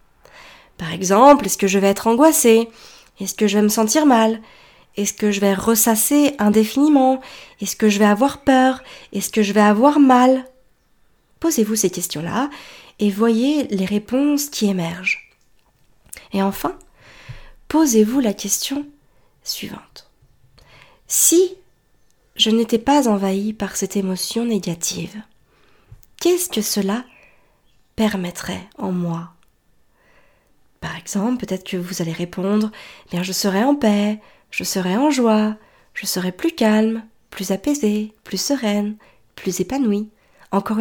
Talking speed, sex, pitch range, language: 130 wpm, female, 195-255 Hz, French